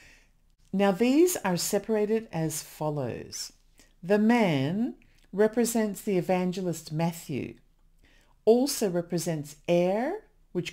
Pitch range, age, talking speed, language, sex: 150-205 Hz, 50-69, 90 wpm, English, female